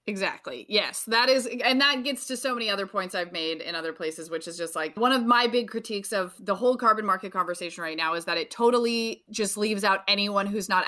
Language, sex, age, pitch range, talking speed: English, female, 20-39, 185-230 Hz, 245 wpm